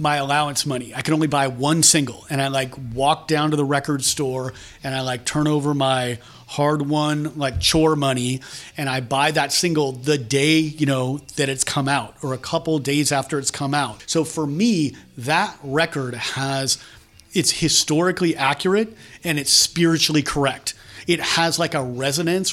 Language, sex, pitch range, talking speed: English, male, 135-165 Hz, 180 wpm